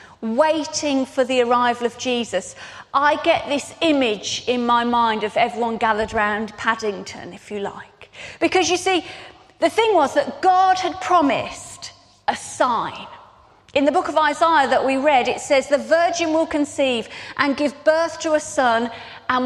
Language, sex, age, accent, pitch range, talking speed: English, female, 30-49, British, 260-340 Hz, 165 wpm